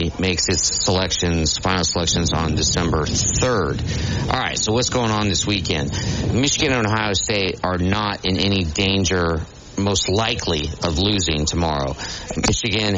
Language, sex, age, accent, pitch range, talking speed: English, male, 40-59, American, 85-105 Hz, 145 wpm